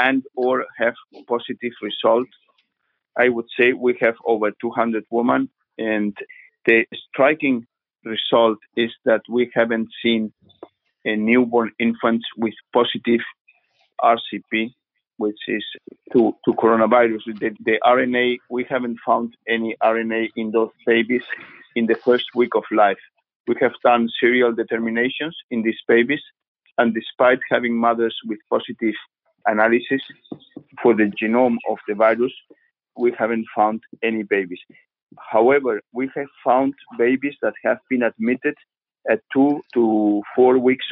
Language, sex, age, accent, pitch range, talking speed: English, male, 50-69, Spanish, 115-125 Hz, 130 wpm